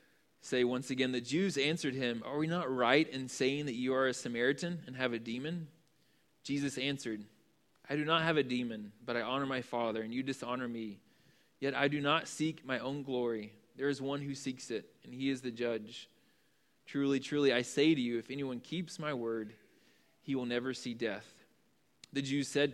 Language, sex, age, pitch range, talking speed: English, male, 20-39, 125-150 Hz, 205 wpm